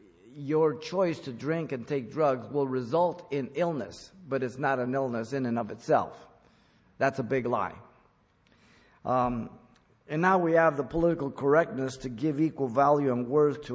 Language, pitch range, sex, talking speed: English, 115-135 Hz, male, 170 wpm